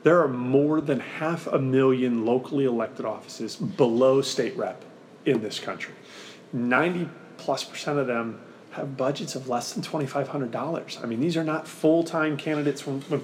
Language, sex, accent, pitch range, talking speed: English, male, American, 130-150 Hz, 160 wpm